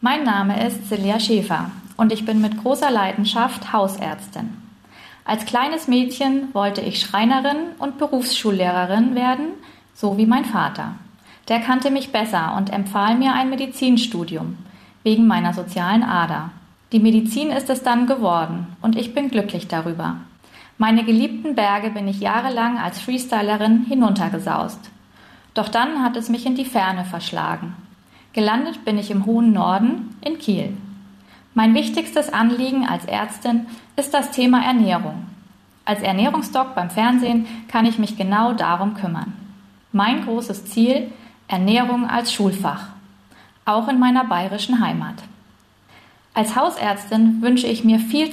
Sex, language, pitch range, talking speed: female, German, 200-250 Hz, 140 wpm